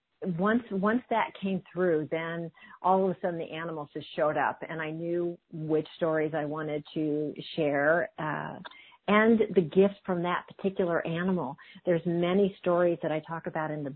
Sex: female